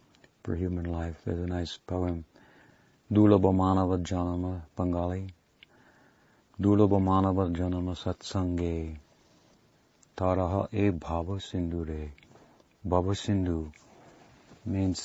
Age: 60-79